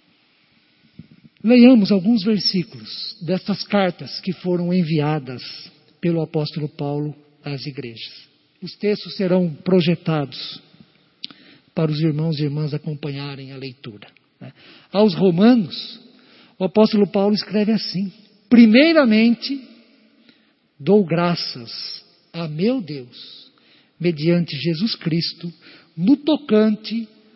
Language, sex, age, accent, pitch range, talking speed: Portuguese, male, 50-69, Brazilian, 155-225 Hz, 95 wpm